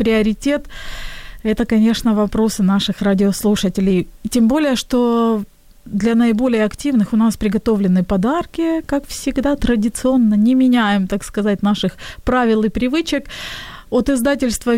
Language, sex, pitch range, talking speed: Ukrainian, female, 210-250 Hz, 120 wpm